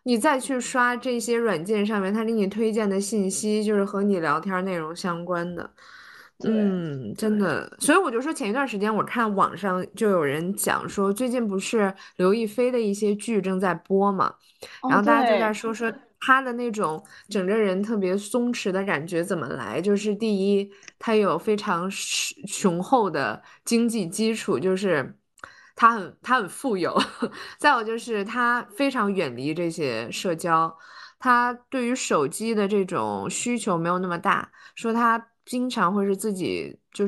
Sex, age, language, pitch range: female, 20-39, Chinese, 190-230 Hz